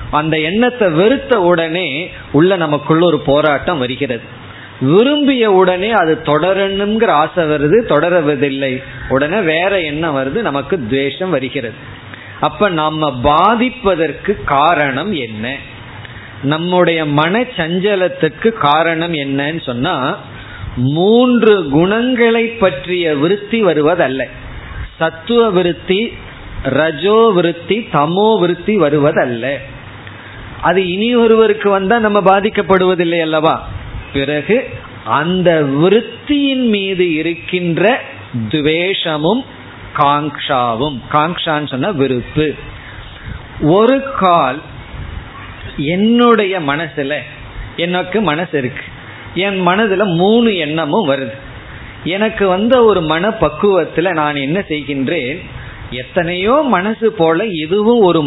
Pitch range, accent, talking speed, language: 135-195 Hz, native, 75 wpm, Tamil